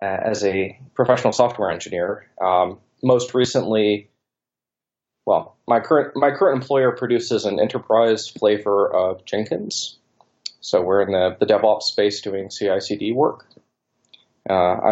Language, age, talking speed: English, 20-39, 130 wpm